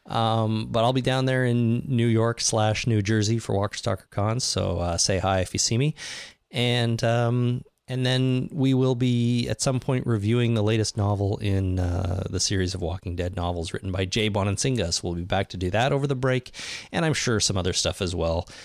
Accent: American